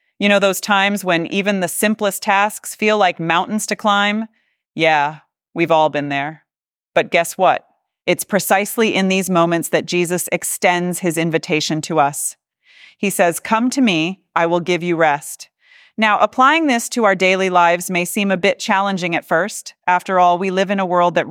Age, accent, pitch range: 30-49, American, 165-205 Hz